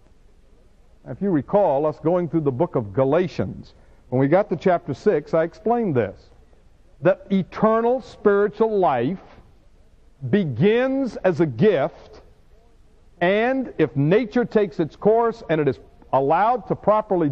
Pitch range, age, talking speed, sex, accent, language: 120-205 Hz, 60-79, 135 wpm, male, American, English